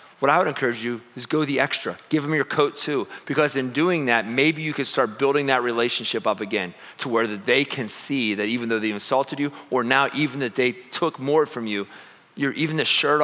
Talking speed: 230 wpm